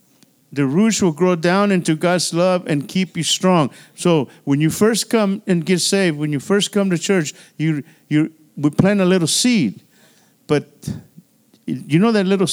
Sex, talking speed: male, 180 wpm